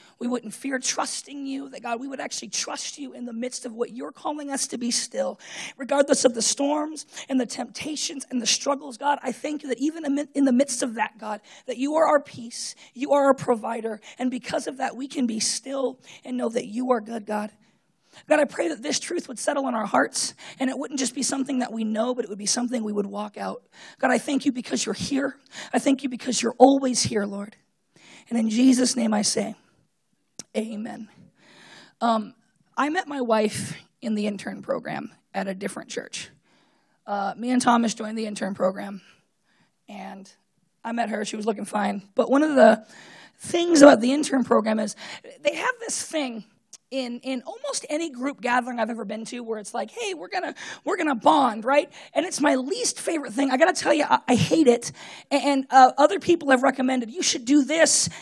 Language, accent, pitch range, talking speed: English, American, 230-280 Hz, 215 wpm